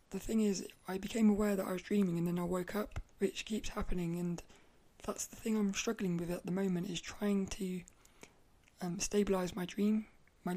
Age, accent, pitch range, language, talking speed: 20-39, British, 190-220 Hz, English, 205 wpm